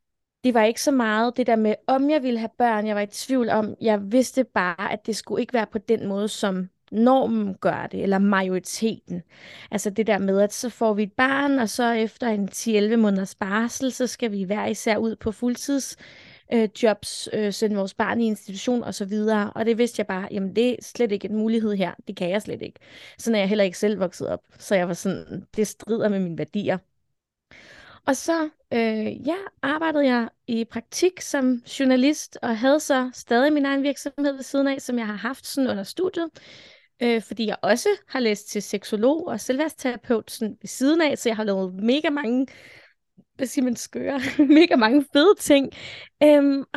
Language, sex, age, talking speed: Danish, female, 20-39, 205 wpm